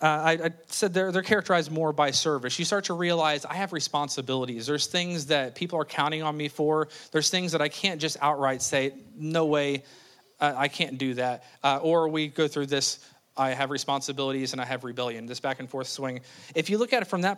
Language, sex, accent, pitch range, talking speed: English, male, American, 135-165 Hz, 230 wpm